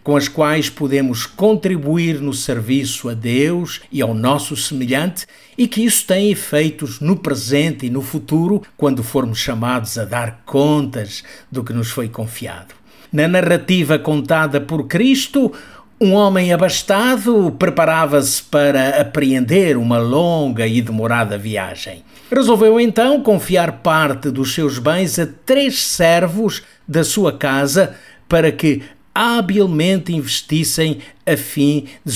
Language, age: Portuguese, 50-69